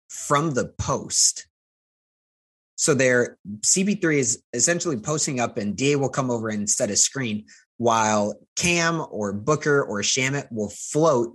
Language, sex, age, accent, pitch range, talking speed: English, male, 20-39, American, 105-135 Hz, 145 wpm